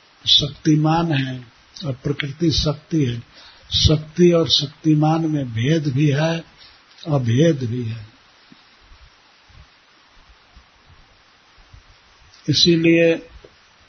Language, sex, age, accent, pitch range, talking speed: Hindi, male, 60-79, native, 125-155 Hz, 80 wpm